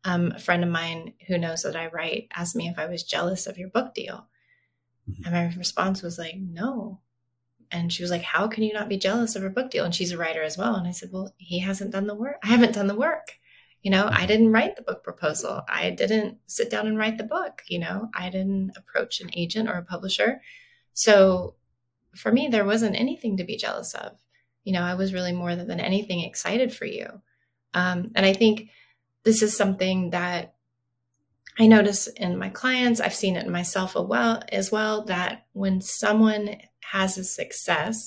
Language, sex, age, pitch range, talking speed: English, female, 30-49, 175-215 Hz, 210 wpm